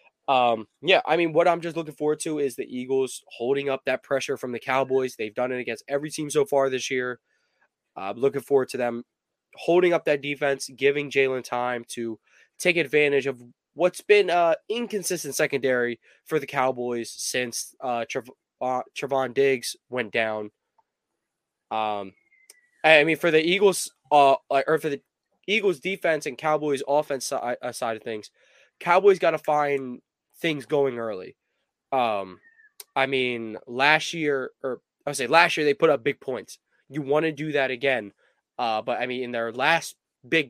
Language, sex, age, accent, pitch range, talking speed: English, male, 20-39, American, 125-155 Hz, 180 wpm